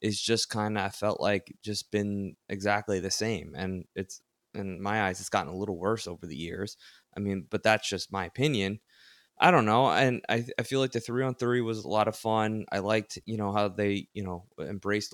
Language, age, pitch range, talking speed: English, 20-39, 95-110 Hz, 225 wpm